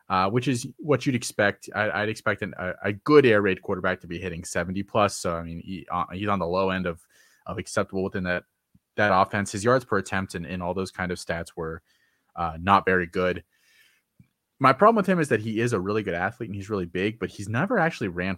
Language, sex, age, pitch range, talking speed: English, male, 20-39, 90-105 Hz, 240 wpm